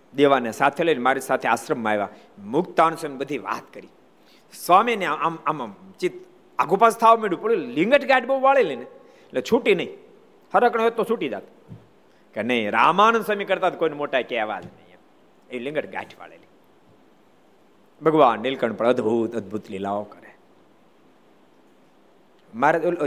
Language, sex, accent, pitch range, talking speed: Gujarati, male, native, 150-230 Hz, 90 wpm